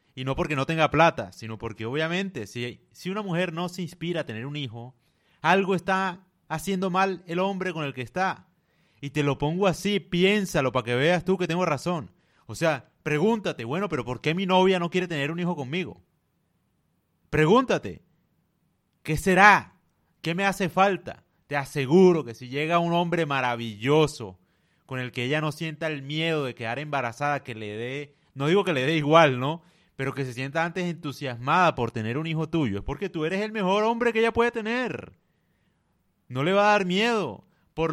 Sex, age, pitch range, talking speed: male, 30-49, 130-180 Hz, 195 wpm